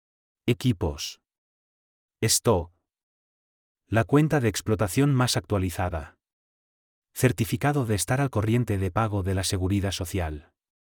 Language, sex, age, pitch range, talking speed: Spanish, male, 30-49, 95-120 Hz, 105 wpm